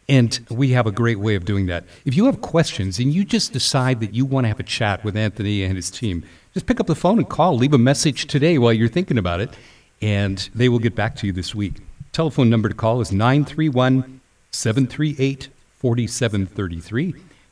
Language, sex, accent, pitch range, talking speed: English, male, American, 105-135 Hz, 205 wpm